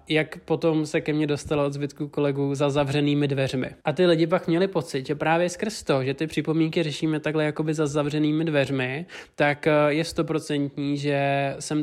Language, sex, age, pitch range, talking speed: Czech, male, 20-39, 140-155 Hz, 185 wpm